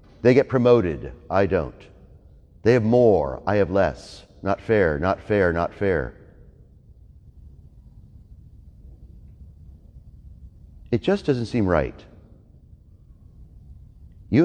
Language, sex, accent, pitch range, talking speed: English, male, American, 85-120 Hz, 95 wpm